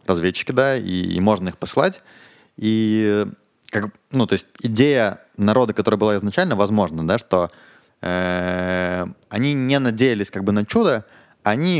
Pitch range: 95-120 Hz